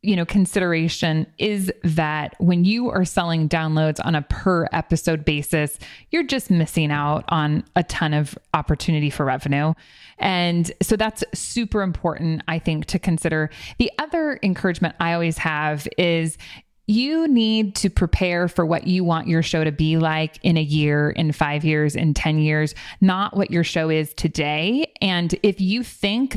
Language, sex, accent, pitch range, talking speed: English, female, American, 160-195 Hz, 170 wpm